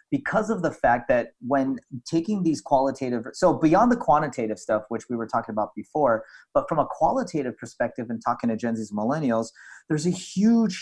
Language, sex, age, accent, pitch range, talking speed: English, male, 30-49, American, 120-150 Hz, 190 wpm